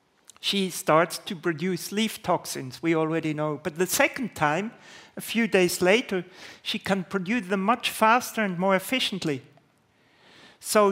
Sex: male